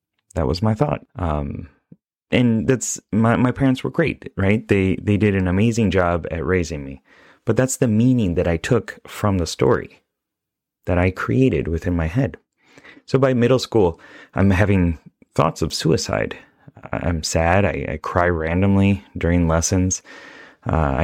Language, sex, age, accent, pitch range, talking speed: English, male, 30-49, American, 85-110 Hz, 160 wpm